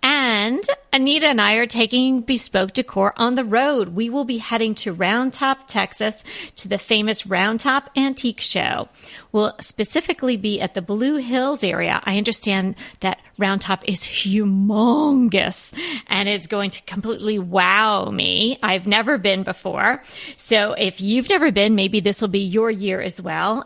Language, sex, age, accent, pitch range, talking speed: English, female, 40-59, American, 195-255 Hz, 165 wpm